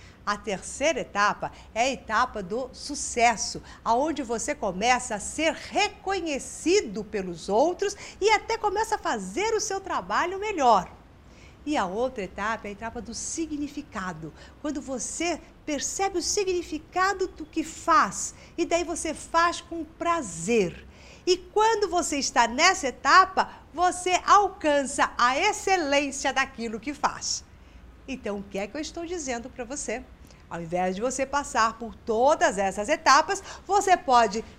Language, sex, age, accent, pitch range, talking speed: Portuguese, female, 50-69, Brazilian, 230-350 Hz, 140 wpm